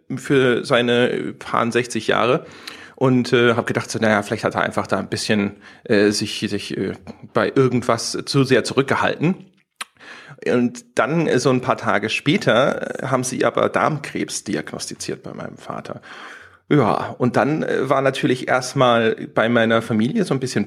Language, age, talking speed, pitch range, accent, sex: German, 40-59, 155 wpm, 115-140 Hz, German, male